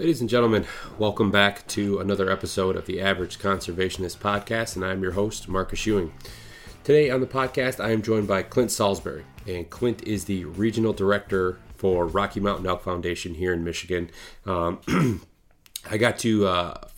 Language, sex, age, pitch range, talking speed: English, male, 30-49, 90-105 Hz, 170 wpm